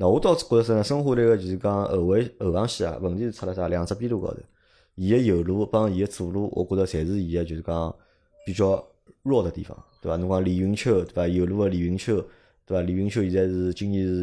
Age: 20-39